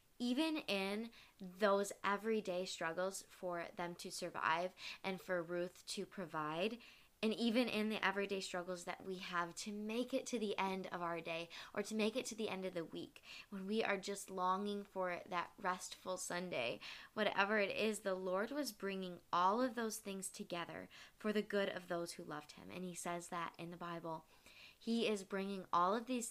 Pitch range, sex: 185-230 Hz, female